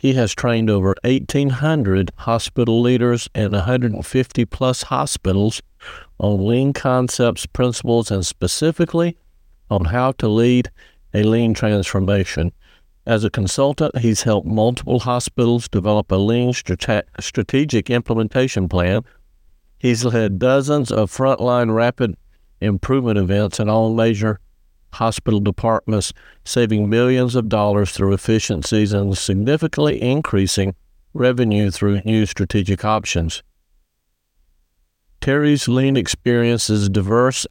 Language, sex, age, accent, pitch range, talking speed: English, male, 50-69, American, 100-125 Hz, 110 wpm